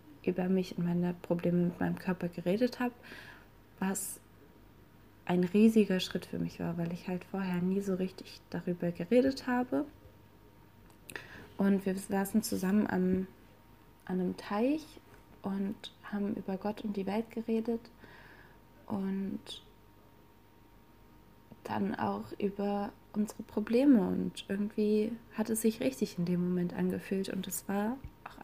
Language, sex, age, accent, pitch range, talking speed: German, female, 20-39, German, 175-220 Hz, 130 wpm